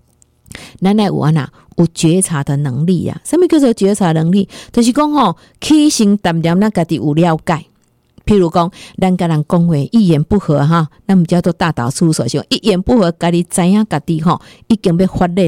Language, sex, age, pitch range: Chinese, female, 50-69, 155-195 Hz